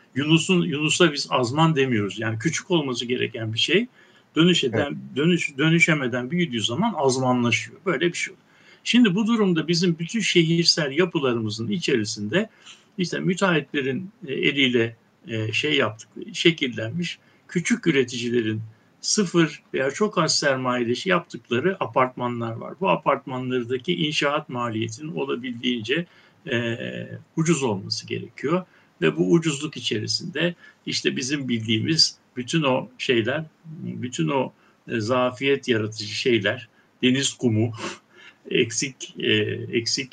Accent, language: native, Turkish